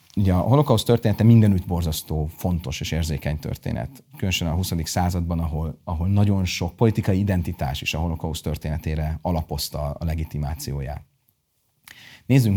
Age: 30-49